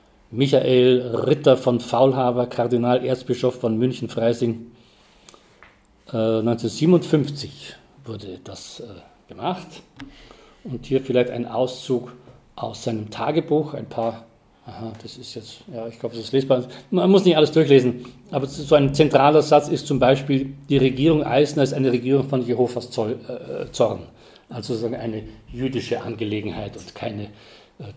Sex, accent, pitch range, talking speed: male, German, 115-140 Hz, 135 wpm